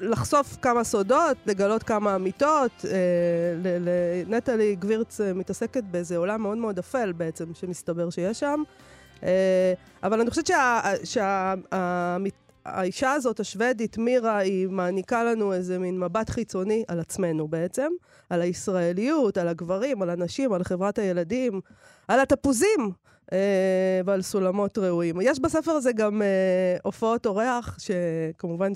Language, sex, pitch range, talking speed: Hebrew, female, 180-235 Hz, 130 wpm